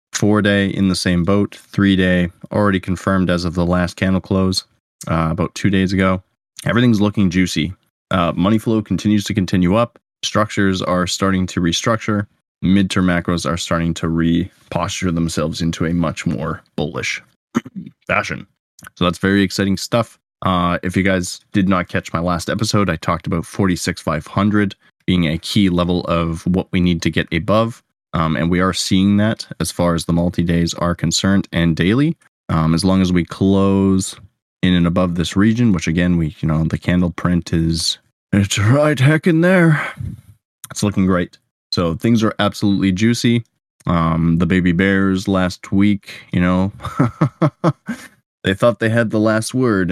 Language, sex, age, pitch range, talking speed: English, male, 20-39, 85-110 Hz, 170 wpm